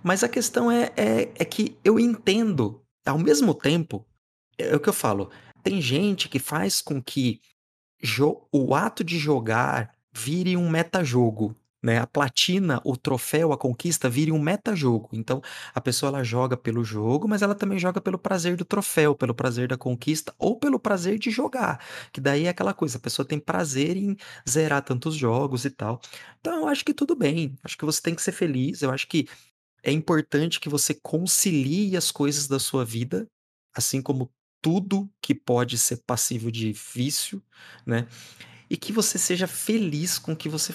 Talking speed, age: 180 wpm, 30-49